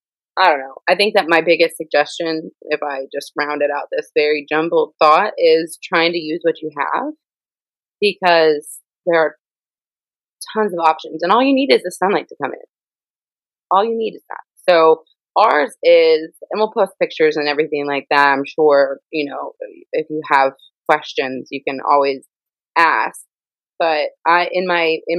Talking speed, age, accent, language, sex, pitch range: 175 wpm, 20-39, American, English, female, 150-200 Hz